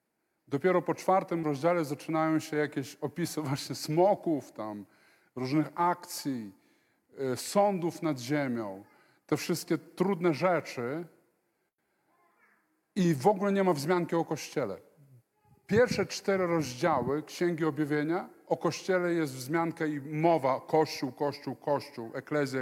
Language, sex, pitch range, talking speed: Polish, male, 135-165 Hz, 115 wpm